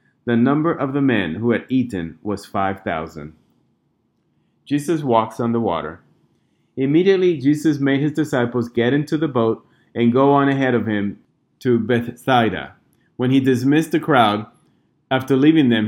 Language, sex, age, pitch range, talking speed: English, male, 30-49, 110-140 Hz, 150 wpm